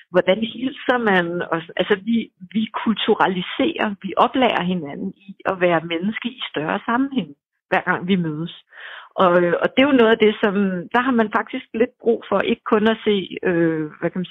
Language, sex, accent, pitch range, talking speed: Danish, female, native, 180-230 Hz, 190 wpm